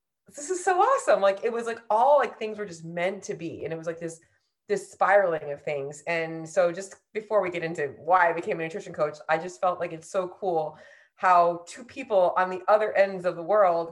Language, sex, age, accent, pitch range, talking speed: English, female, 30-49, American, 160-205 Hz, 235 wpm